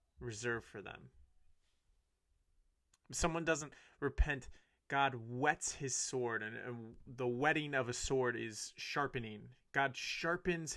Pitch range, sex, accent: 105-145 Hz, male, American